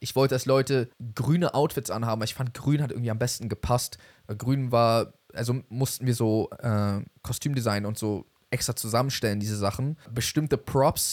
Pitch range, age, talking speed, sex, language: 110-130 Hz, 20-39, 165 wpm, male, German